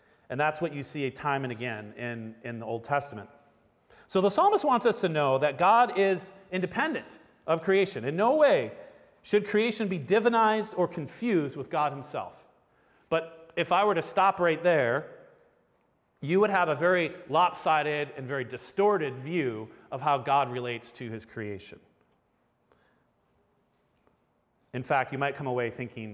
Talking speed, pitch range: 160 wpm, 125-185 Hz